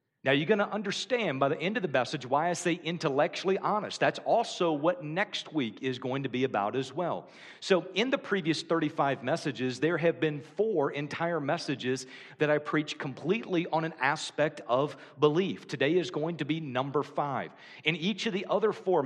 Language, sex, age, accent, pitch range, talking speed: English, male, 40-59, American, 140-185 Hz, 195 wpm